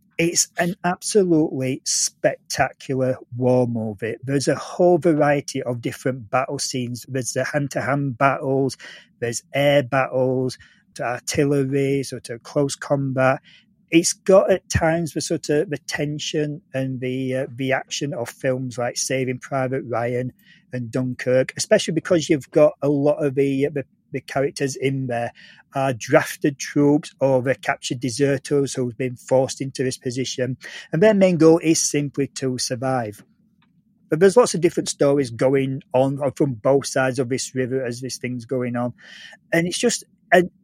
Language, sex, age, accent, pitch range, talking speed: English, male, 40-59, British, 130-160 Hz, 155 wpm